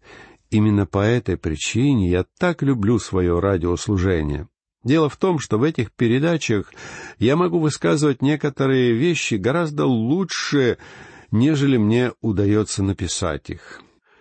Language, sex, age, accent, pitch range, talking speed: Russian, male, 50-69, native, 105-150 Hz, 120 wpm